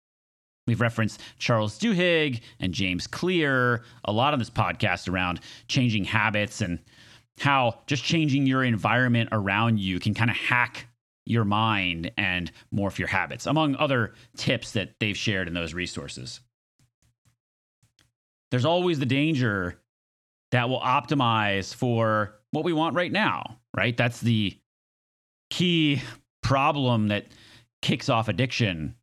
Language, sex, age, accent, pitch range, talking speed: English, male, 30-49, American, 105-130 Hz, 130 wpm